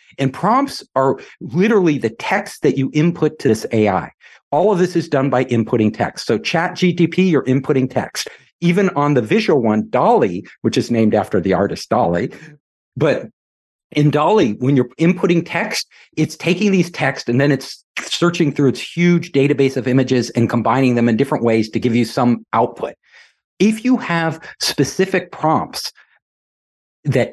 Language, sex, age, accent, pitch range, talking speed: English, male, 50-69, American, 120-165 Hz, 170 wpm